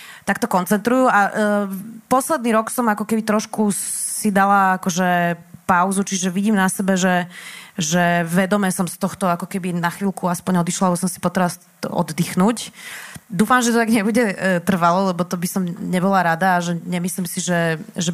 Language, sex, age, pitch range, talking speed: Slovak, female, 20-39, 175-200 Hz, 180 wpm